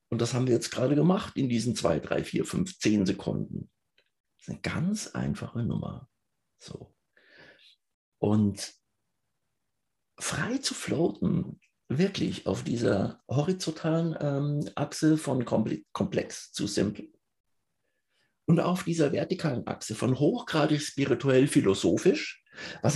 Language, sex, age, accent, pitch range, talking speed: German, male, 60-79, German, 140-185 Hz, 115 wpm